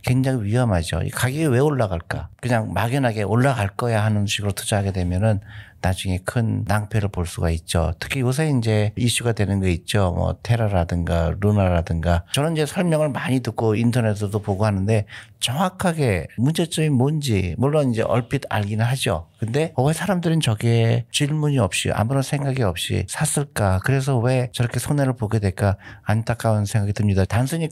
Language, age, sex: Korean, 50-69, male